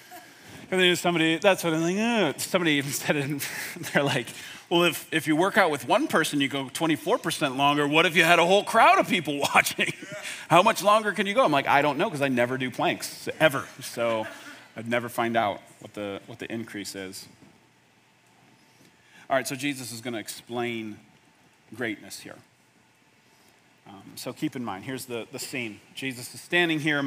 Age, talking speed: 30-49, 195 wpm